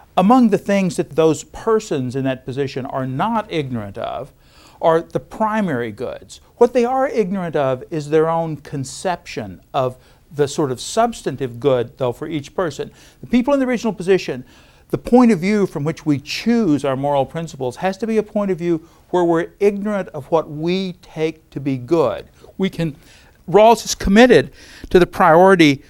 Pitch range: 135-190 Hz